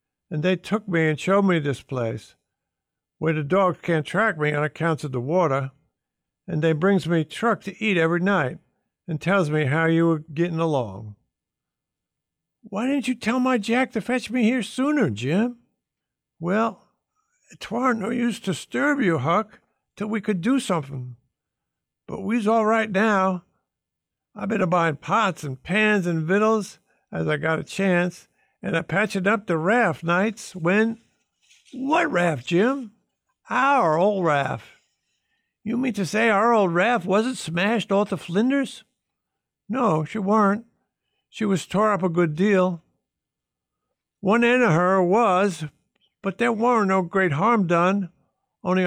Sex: male